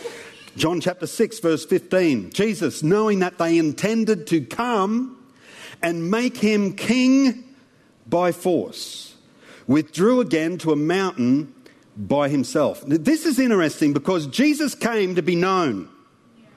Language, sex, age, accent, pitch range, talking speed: English, male, 50-69, Australian, 165-245 Hz, 125 wpm